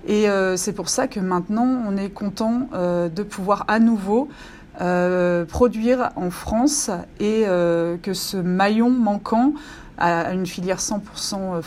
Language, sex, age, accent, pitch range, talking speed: French, female, 30-49, French, 190-235 Hz, 130 wpm